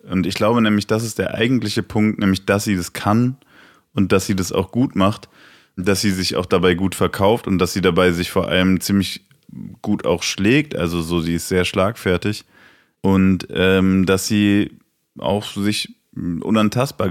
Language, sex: German, male